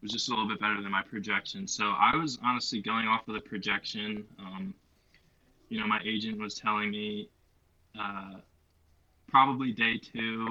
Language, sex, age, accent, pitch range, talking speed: English, male, 20-39, American, 100-125 Hz, 170 wpm